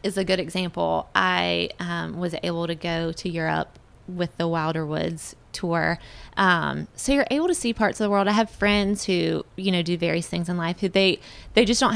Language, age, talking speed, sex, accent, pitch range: English, 20-39, 215 wpm, female, American, 160-205 Hz